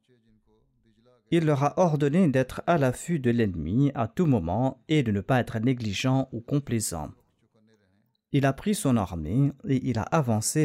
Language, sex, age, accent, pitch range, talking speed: French, male, 40-59, French, 110-140 Hz, 165 wpm